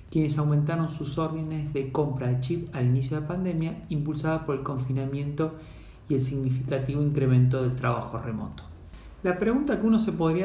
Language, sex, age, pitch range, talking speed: Spanish, male, 40-59, 130-160 Hz, 170 wpm